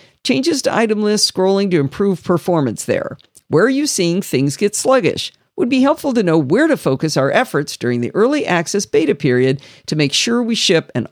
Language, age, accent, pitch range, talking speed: English, 50-69, American, 145-225 Hz, 205 wpm